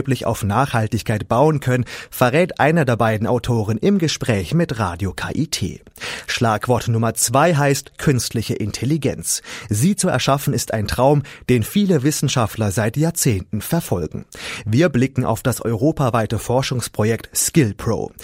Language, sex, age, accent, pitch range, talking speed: German, male, 30-49, German, 110-145 Hz, 130 wpm